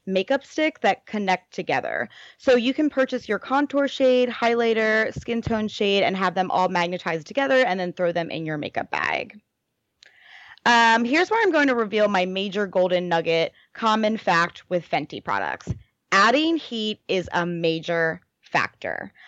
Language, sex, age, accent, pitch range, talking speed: English, female, 20-39, American, 180-235 Hz, 160 wpm